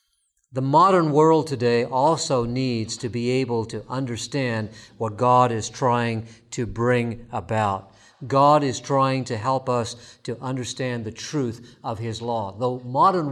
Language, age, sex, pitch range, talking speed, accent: English, 50-69, male, 130-180 Hz, 150 wpm, American